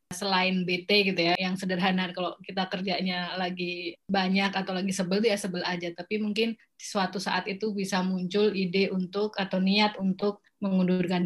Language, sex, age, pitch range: Indonesian, female, 20-39, 185-210 Hz